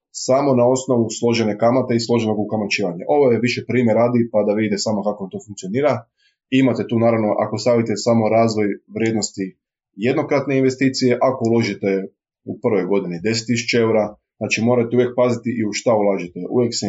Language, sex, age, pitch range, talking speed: Croatian, male, 20-39, 105-125 Hz, 165 wpm